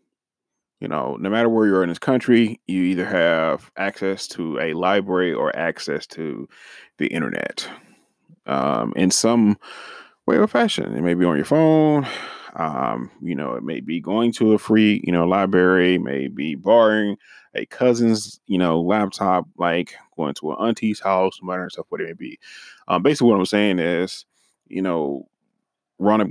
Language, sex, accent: English, male, American